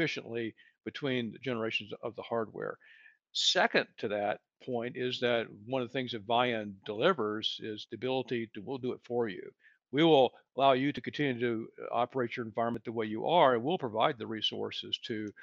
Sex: male